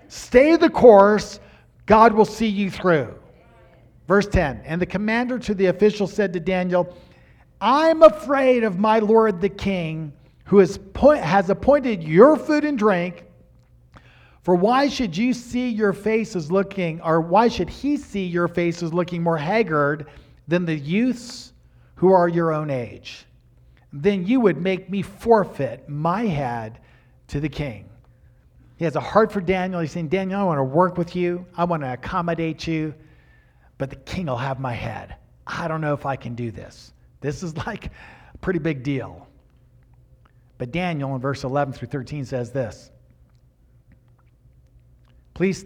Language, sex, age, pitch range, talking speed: English, male, 50-69, 125-190 Hz, 160 wpm